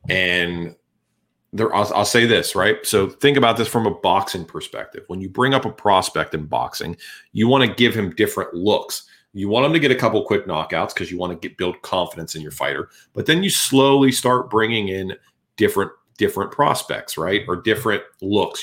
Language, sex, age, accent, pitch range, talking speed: English, male, 40-59, American, 90-110 Hz, 195 wpm